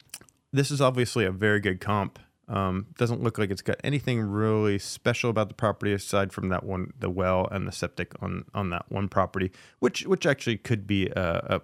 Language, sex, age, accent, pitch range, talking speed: English, male, 30-49, American, 95-120 Hz, 205 wpm